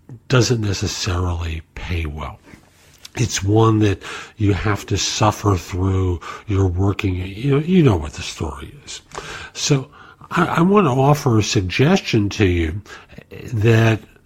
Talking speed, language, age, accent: 140 wpm, English, 50-69, American